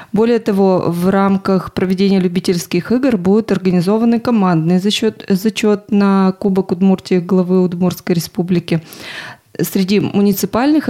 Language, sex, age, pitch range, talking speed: Russian, female, 20-39, 180-210 Hz, 105 wpm